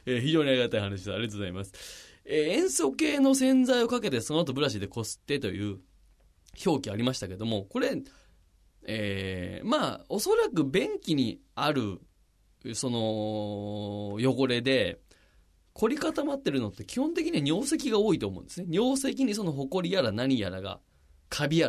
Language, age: Japanese, 20-39